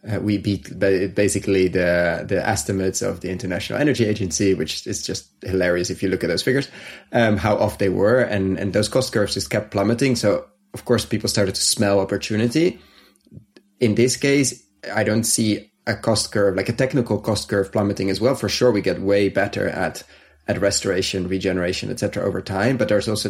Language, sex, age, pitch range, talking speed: English, male, 30-49, 95-110 Hz, 195 wpm